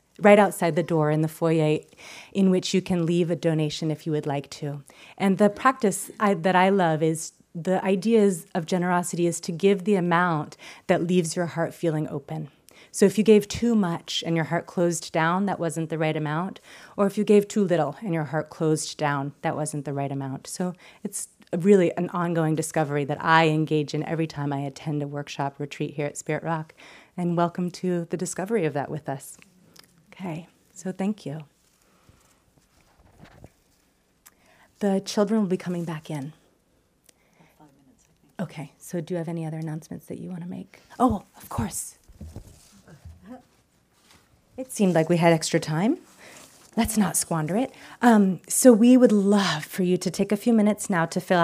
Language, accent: English, American